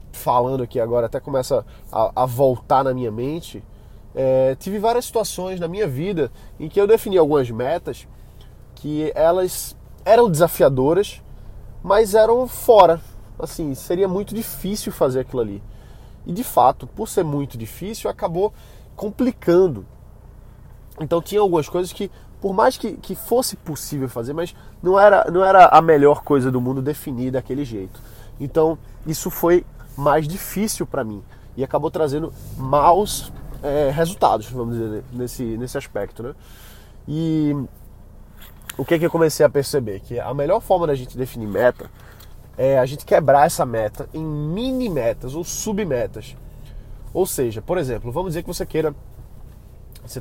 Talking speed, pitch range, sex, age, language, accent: 155 wpm, 120-175 Hz, male, 20-39, Portuguese, Brazilian